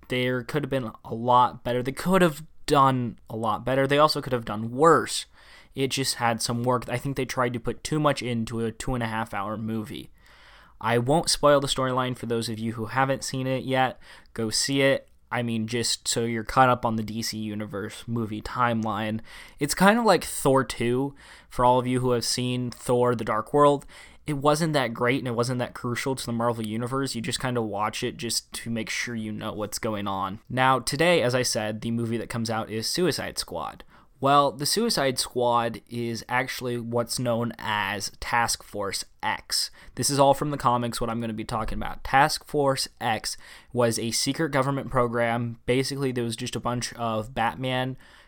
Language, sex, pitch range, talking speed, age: English, male, 115-130 Hz, 210 wpm, 20-39